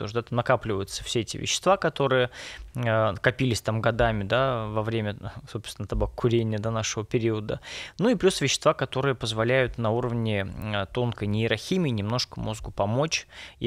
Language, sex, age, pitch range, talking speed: Russian, male, 20-39, 105-130 Hz, 130 wpm